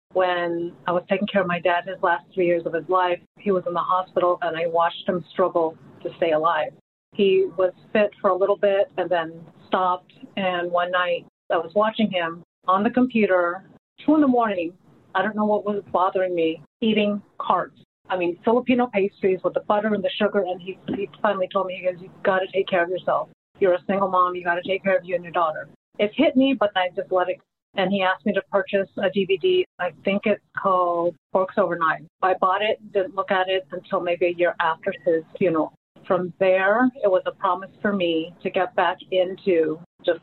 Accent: American